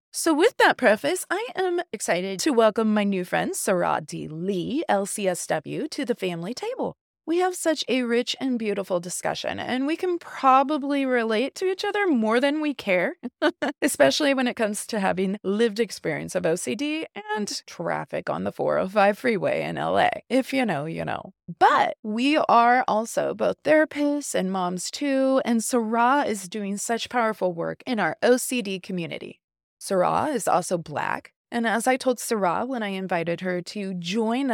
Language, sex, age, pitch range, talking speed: English, female, 20-39, 195-280 Hz, 170 wpm